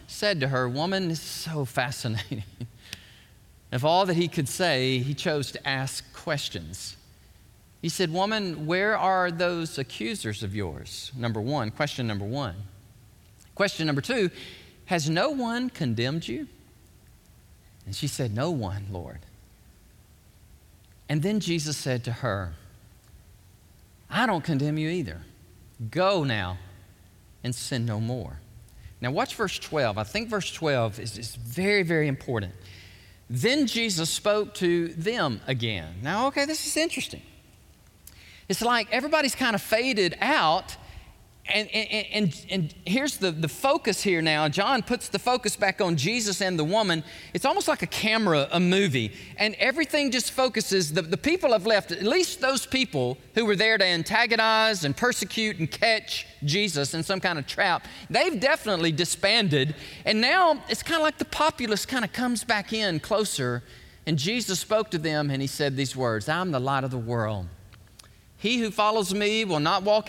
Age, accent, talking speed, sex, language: 40-59, American, 160 wpm, male, English